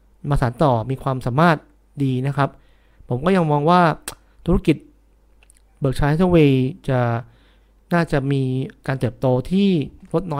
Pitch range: 130-170 Hz